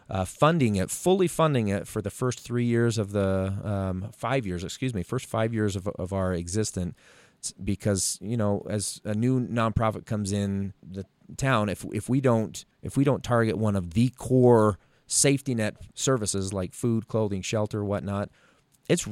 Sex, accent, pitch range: male, American, 95-115 Hz